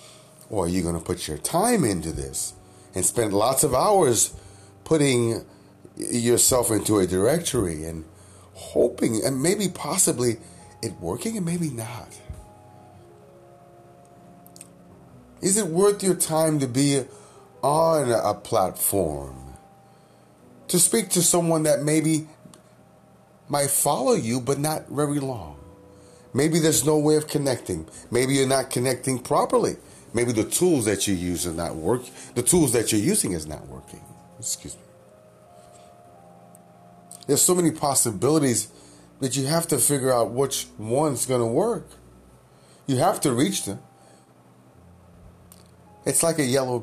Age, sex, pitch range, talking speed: 30-49, male, 90-140 Hz, 135 wpm